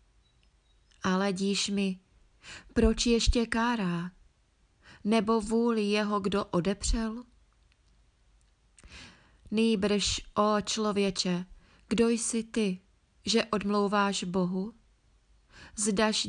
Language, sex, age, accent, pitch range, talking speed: Czech, female, 20-39, native, 195-215 Hz, 75 wpm